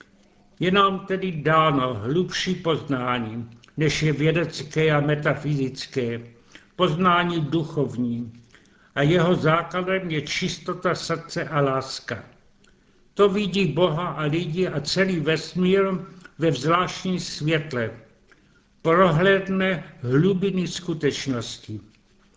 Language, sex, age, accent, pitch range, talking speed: Czech, male, 70-89, native, 145-180 Hz, 95 wpm